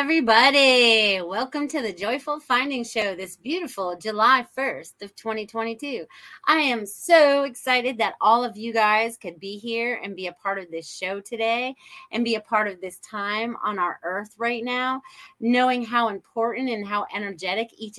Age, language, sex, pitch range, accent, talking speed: 30-49, English, female, 210-265 Hz, American, 175 wpm